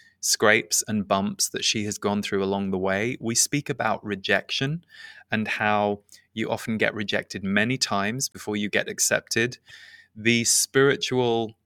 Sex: male